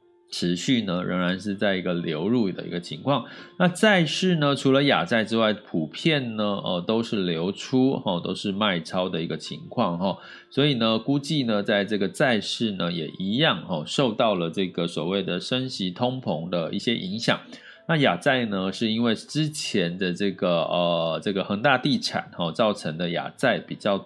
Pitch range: 95-135 Hz